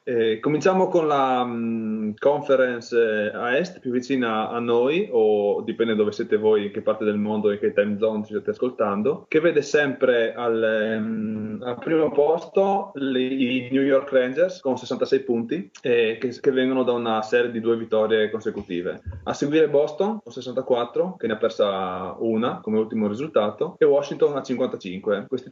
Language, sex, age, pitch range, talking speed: Italian, male, 20-39, 105-135 Hz, 170 wpm